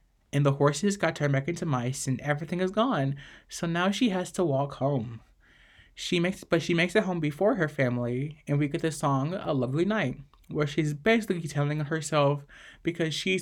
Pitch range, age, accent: 140-175 Hz, 20-39, American